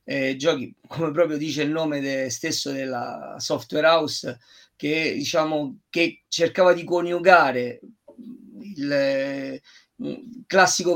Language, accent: Italian, native